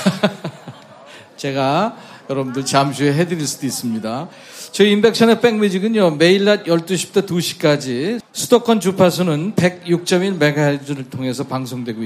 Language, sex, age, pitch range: Korean, male, 40-59, 155-220 Hz